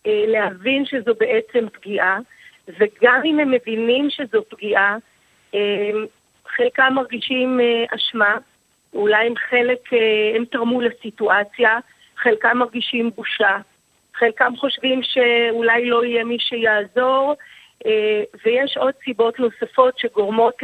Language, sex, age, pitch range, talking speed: Hebrew, female, 40-59, 215-255 Hz, 100 wpm